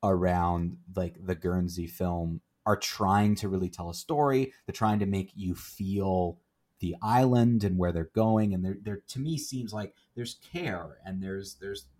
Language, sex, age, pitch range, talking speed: English, male, 30-49, 90-130 Hz, 180 wpm